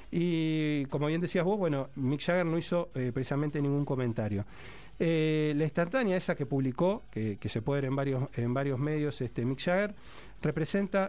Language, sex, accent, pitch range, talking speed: Spanish, male, Argentinian, 125-155 Hz, 185 wpm